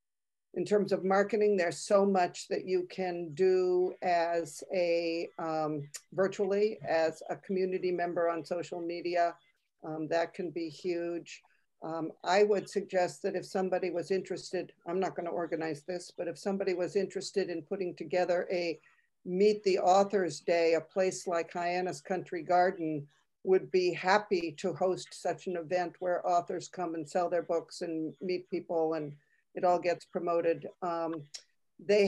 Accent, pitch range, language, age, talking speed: American, 175-195 Hz, English, 60-79, 160 wpm